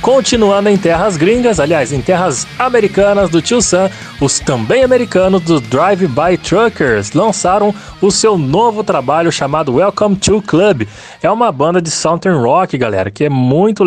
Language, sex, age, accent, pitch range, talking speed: Portuguese, male, 20-39, Brazilian, 150-205 Hz, 155 wpm